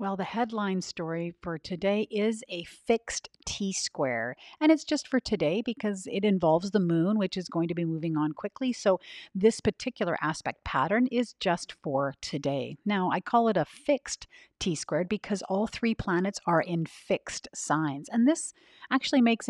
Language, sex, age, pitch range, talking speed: English, female, 50-69, 165-215 Hz, 170 wpm